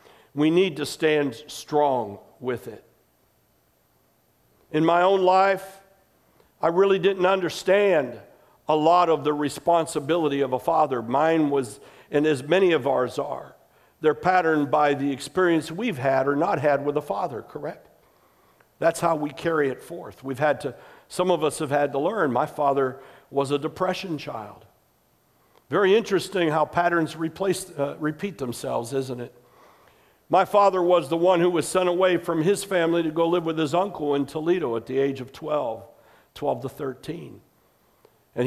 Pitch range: 140-175 Hz